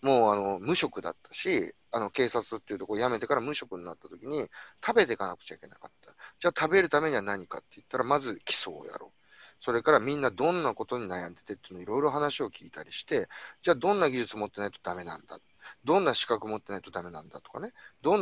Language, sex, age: Japanese, male, 30-49